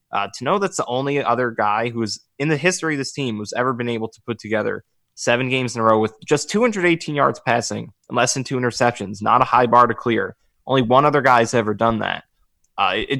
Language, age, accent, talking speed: English, 20-39, American, 235 wpm